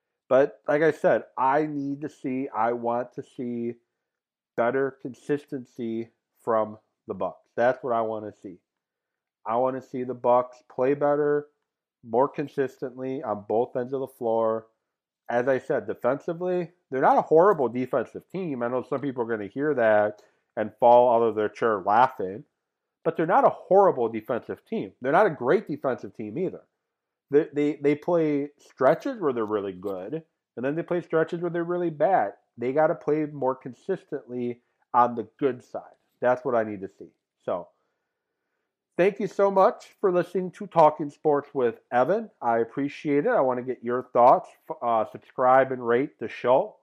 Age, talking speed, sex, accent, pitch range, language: 30-49, 180 wpm, male, American, 115-145 Hz, English